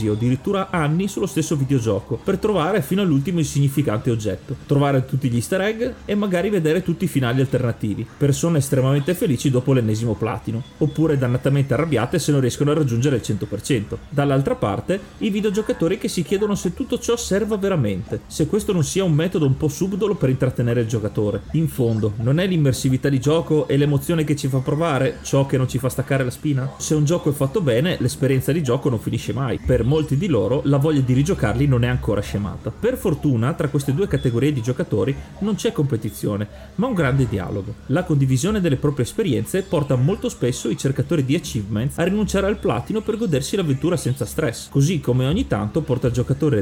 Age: 30-49